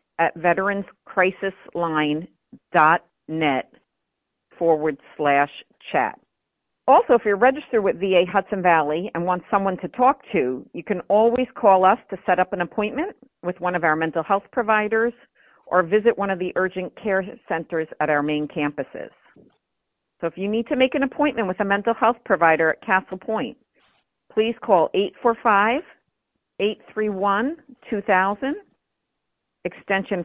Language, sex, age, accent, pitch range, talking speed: English, female, 50-69, American, 170-210 Hz, 135 wpm